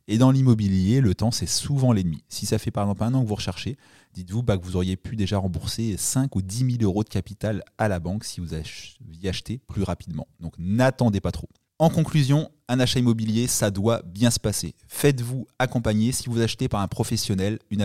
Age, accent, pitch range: 30-49, French, 95-120 Hz